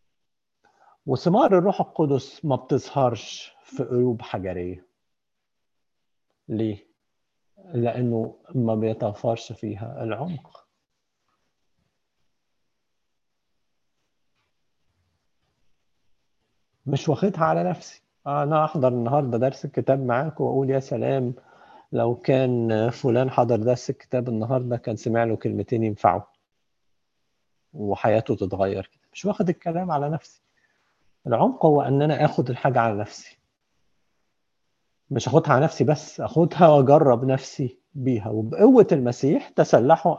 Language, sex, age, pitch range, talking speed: Arabic, male, 50-69, 120-160 Hz, 100 wpm